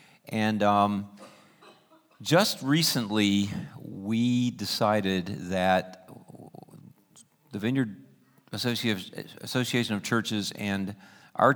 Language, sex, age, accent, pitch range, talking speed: English, male, 50-69, American, 100-120 Hz, 75 wpm